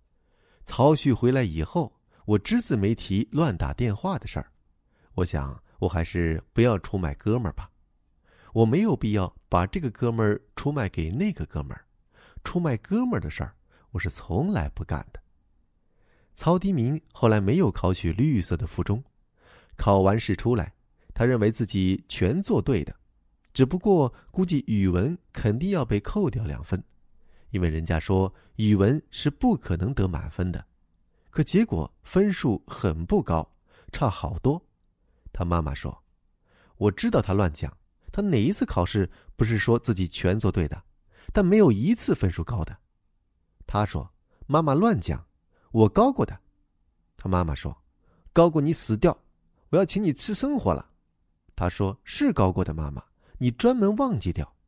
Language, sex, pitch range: Chinese, male, 85-130 Hz